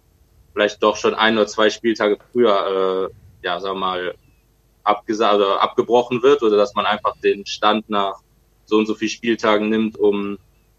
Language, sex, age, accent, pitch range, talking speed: German, male, 20-39, German, 100-115 Hz, 160 wpm